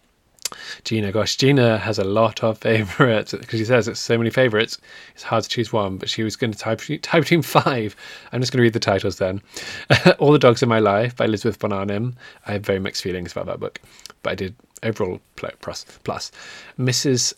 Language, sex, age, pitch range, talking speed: English, male, 20-39, 105-125 Hz, 205 wpm